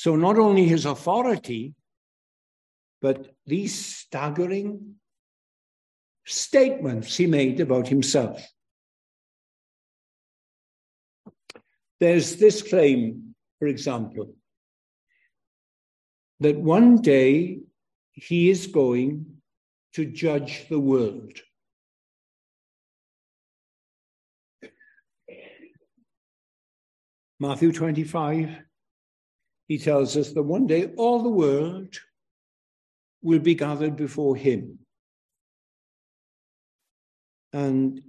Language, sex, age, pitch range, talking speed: English, male, 60-79, 135-175 Hz, 70 wpm